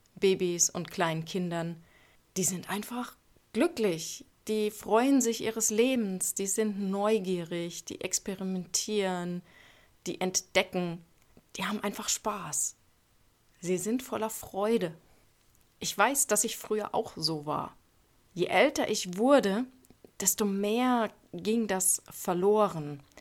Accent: German